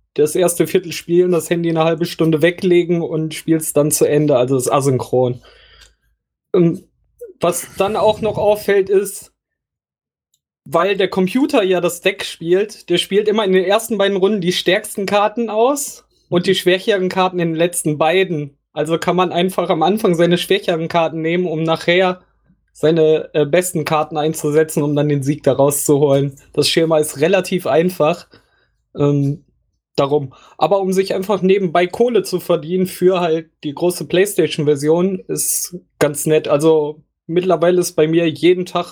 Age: 20-39